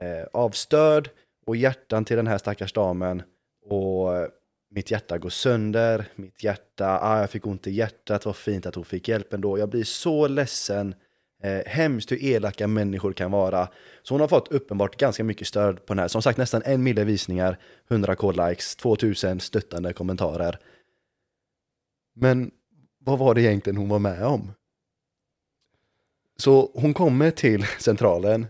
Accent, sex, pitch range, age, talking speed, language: native, male, 100-130 Hz, 20-39, 160 wpm, Swedish